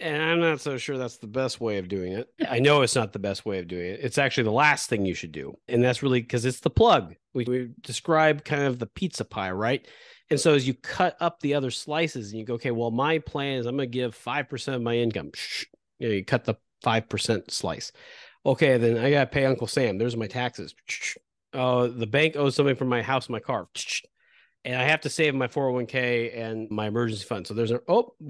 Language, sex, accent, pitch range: English, male, American, 110-140 Hz